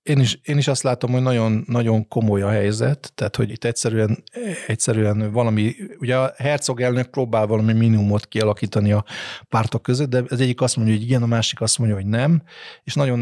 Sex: male